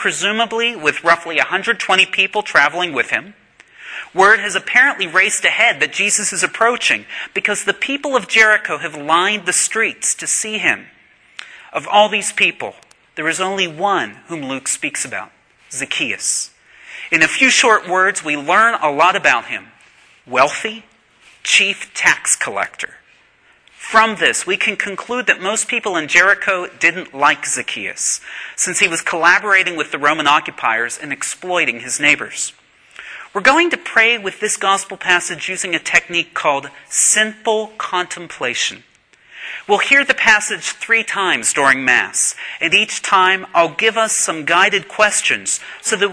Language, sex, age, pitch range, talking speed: English, male, 30-49, 165-215 Hz, 150 wpm